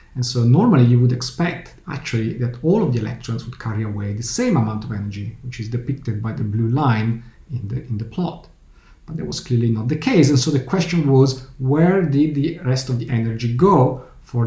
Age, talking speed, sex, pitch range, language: 50-69, 215 wpm, male, 115-145 Hz, English